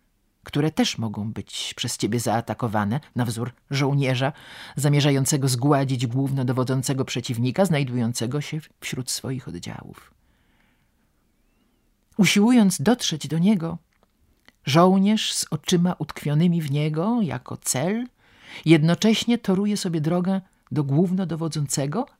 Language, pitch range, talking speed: Polish, 130-205 Hz, 100 wpm